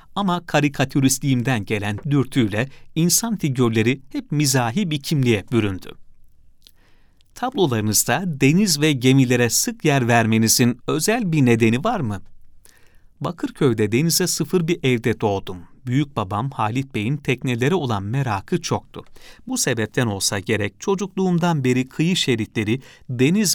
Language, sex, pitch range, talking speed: Turkish, male, 110-155 Hz, 115 wpm